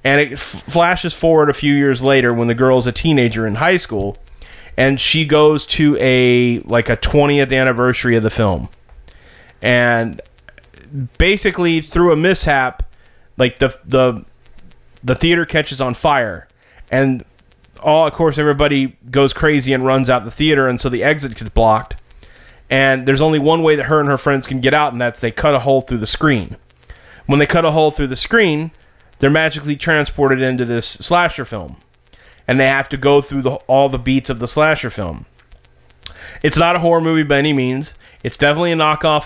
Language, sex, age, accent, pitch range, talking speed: English, male, 30-49, American, 120-150 Hz, 185 wpm